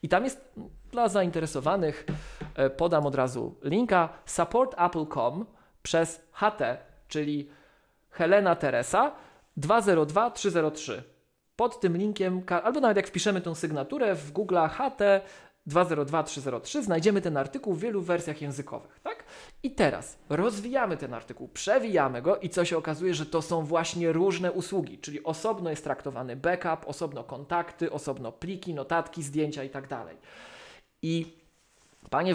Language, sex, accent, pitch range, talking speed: Polish, male, native, 145-185 Hz, 130 wpm